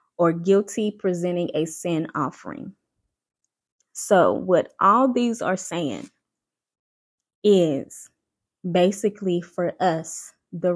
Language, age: English, 20-39